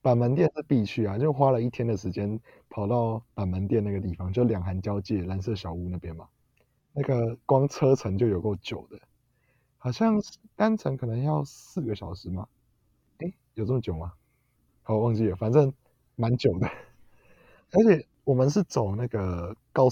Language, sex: Chinese, male